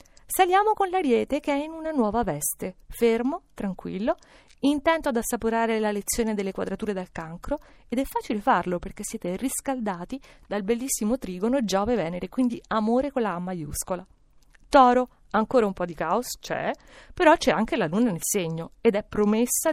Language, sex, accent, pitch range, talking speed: Italian, female, native, 195-265 Hz, 165 wpm